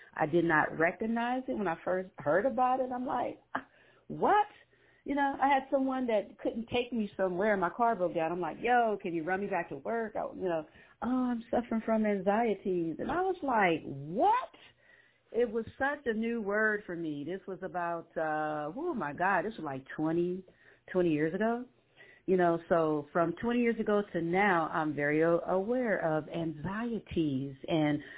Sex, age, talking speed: female, 40-59, 185 wpm